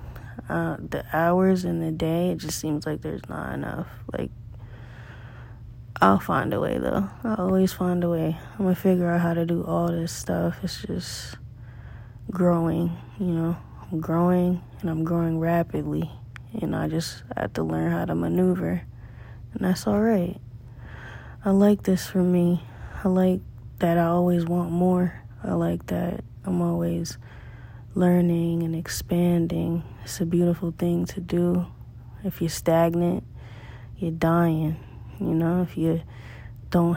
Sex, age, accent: female, 20-39, American